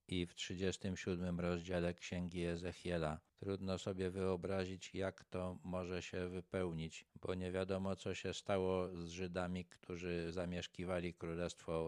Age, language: 50-69, Polish